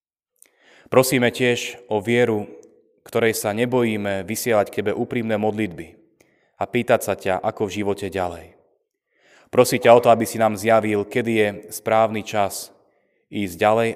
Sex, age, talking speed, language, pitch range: male, 20-39, 140 wpm, Slovak, 95-115 Hz